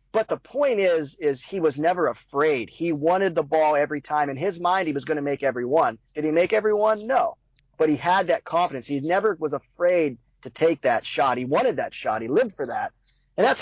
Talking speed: 235 wpm